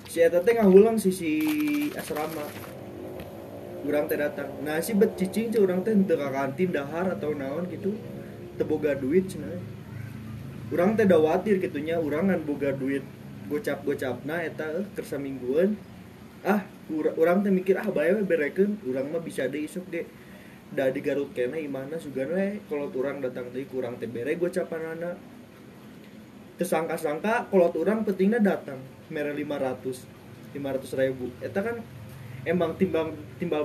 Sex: male